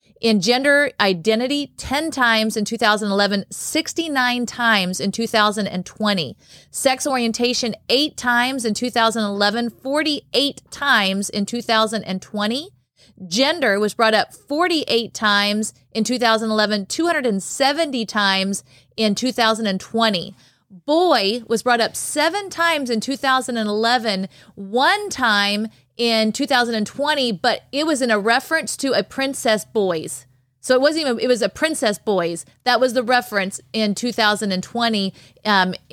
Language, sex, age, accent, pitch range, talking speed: English, female, 40-59, American, 205-255 Hz, 120 wpm